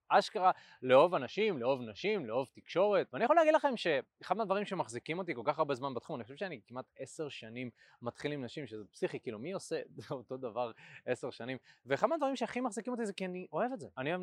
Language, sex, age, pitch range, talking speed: Hebrew, male, 20-39, 130-185 Hz, 215 wpm